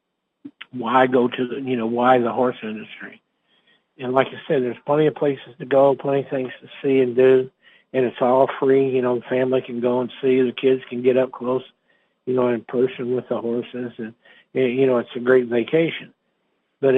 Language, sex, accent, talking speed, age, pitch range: English, male, American, 215 wpm, 60-79, 120-135 Hz